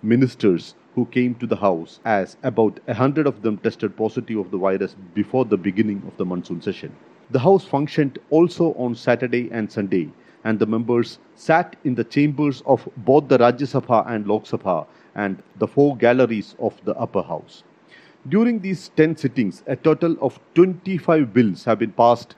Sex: male